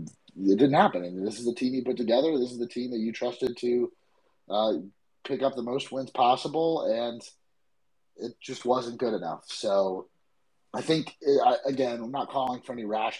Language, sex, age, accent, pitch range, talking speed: English, male, 30-49, American, 100-125 Hz, 190 wpm